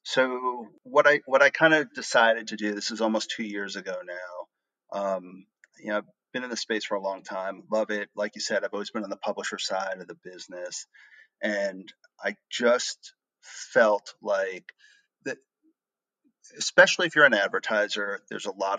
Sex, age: male, 40-59